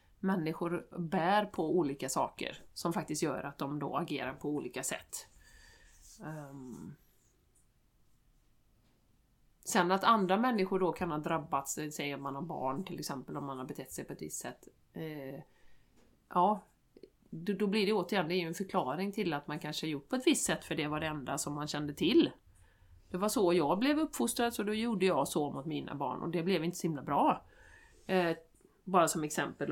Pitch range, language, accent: 155-205 Hz, Swedish, native